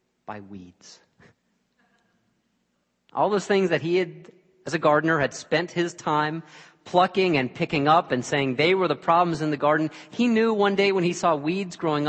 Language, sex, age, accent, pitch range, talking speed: English, male, 40-59, American, 130-180 Hz, 180 wpm